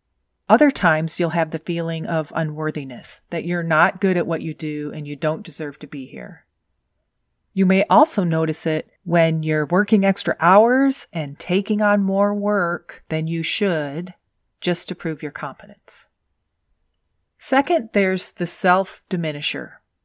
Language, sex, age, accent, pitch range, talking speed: English, female, 40-59, American, 155-195 Hz, 150 wpm